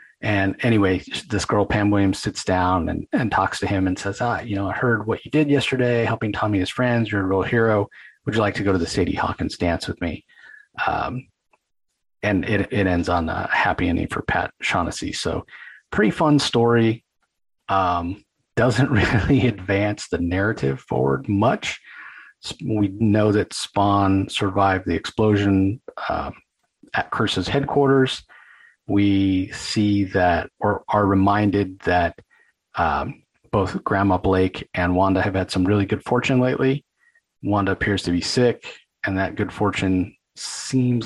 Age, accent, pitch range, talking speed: 40-59, American, 95-115 Hz, 160 wpm